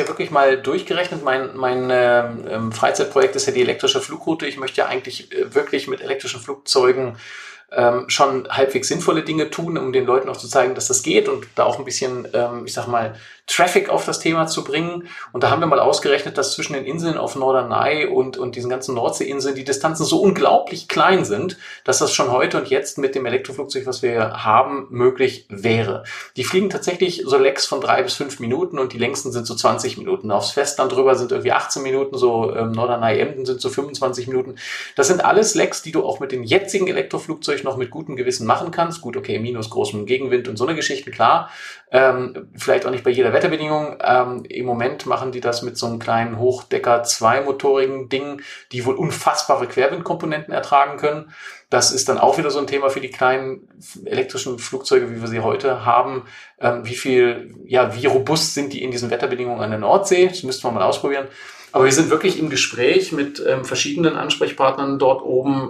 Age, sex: 40-59, male